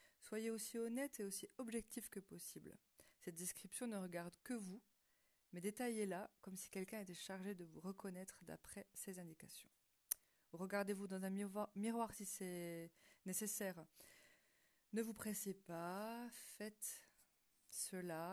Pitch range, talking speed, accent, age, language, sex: 175-215 Hz, 130 wpm, French, 40-59, French, female